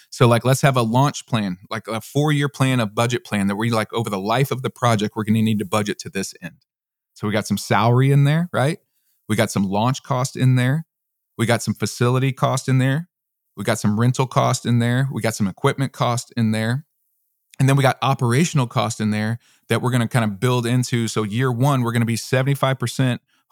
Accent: American